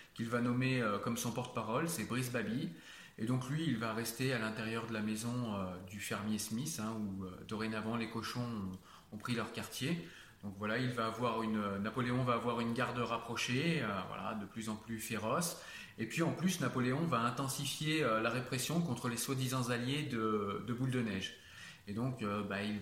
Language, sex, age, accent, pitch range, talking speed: French, male, 30-49, French, 110-130 Hz, 190 wpm